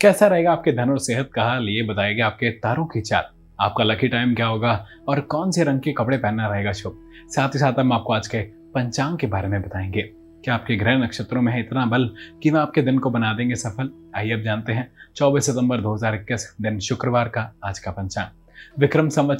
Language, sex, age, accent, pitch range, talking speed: Hindi, male, 20-39, native, 105-135 Hz, 215 wpm